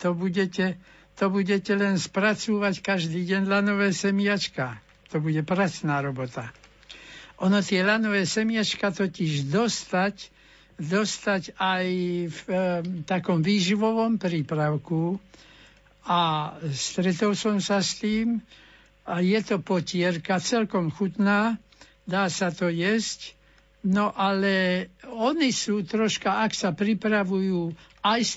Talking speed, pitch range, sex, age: 110 wpm, 170-205 Hz, male, 60-79